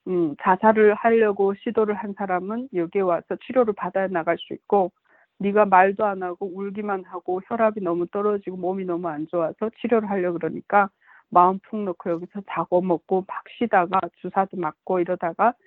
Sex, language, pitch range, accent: female, Korean, 180-210 Hz, native